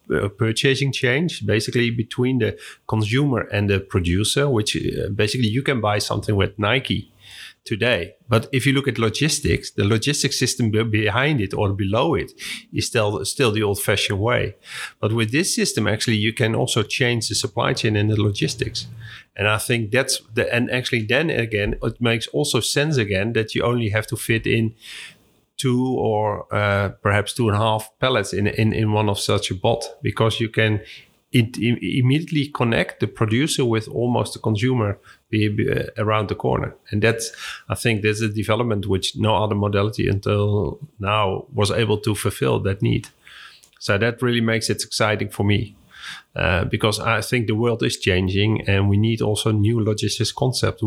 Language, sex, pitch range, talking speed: English, male, 105-120 Hz, 175 wpm